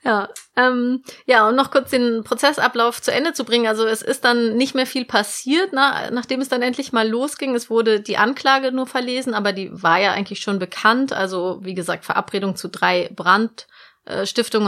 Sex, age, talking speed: female, 30-49, 190 wpm